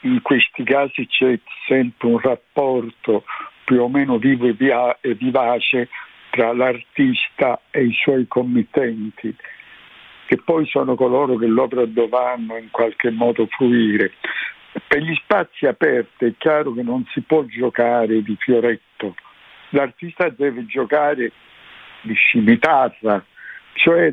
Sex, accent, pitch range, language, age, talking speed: male, native, 120-155 Hz, Italian, 60-79, 120 wpm